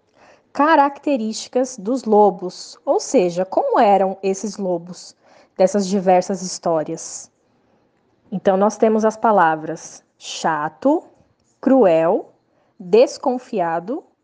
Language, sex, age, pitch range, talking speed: Portuguese, female, 20-39, 185-245 Hz, 85 wpm